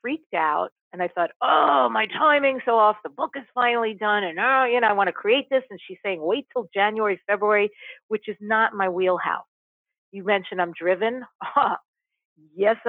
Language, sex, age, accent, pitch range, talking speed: English, female, 50-69, American, 180-245 Hz, 190 wpm